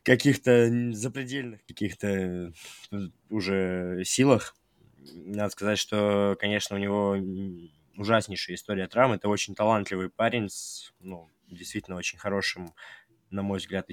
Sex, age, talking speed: male, 20-39, 110 wpm